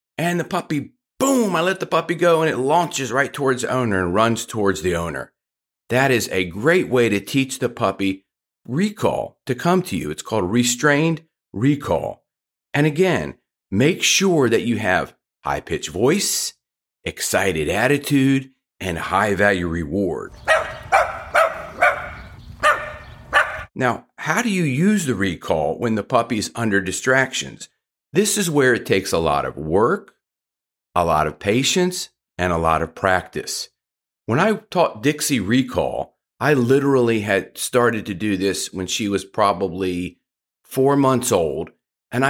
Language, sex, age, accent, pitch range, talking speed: English, male, 40-59, American, 100-150 Hz, 150 wpm